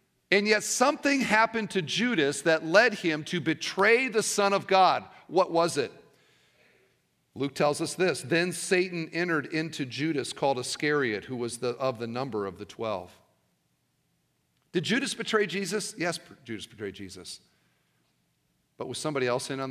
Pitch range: 145-230 Hz